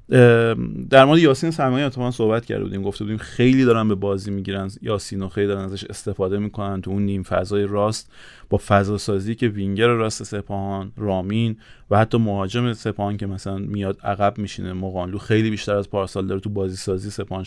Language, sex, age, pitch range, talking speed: Persian, male, 30-49, 95-115 Hz, 185 wpm